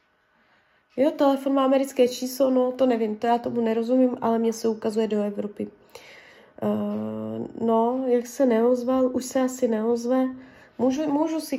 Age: 20-39